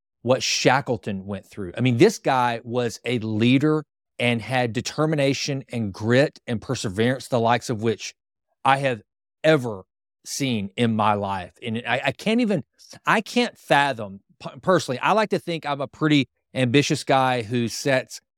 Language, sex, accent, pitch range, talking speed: English, male, American, 120-165 Hz, 160 wpm